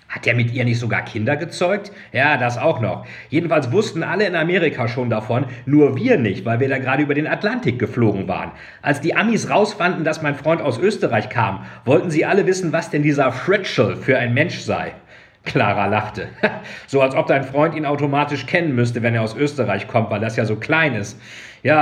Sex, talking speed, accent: male, 210 wpm, German